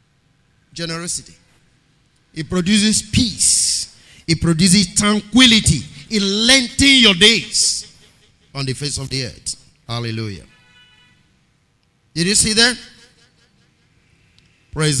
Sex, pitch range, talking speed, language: male, 145-200 Hz, 90 wpm, English